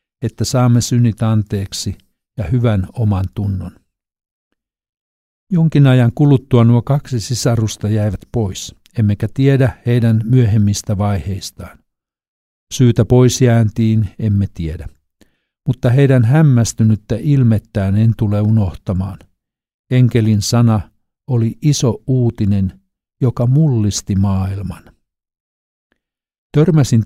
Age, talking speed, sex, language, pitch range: 60-79, 95 wpm, male, Finnish, 100-125 Hz